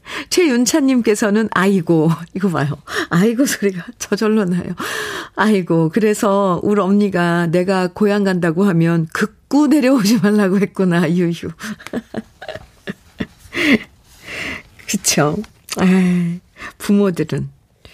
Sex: female